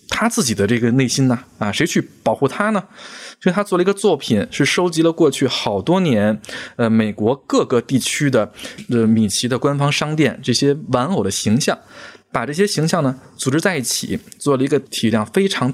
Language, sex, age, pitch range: Chinese, male, 20-39, 110-150 Hz